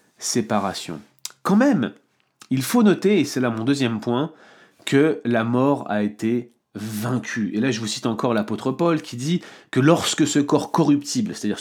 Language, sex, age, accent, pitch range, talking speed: French, male, 30-49, French, 110-150 Hz, 175 wpm